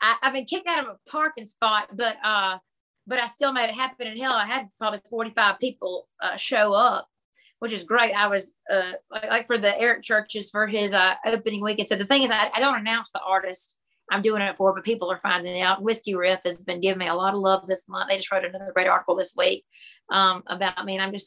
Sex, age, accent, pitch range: female, 40-59, American, 195-230 Hz